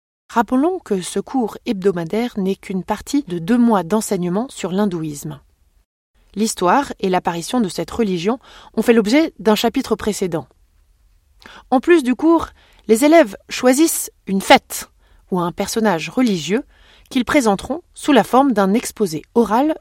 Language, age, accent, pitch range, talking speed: French, 20-39, French, 175-255 Hz, 140 wpm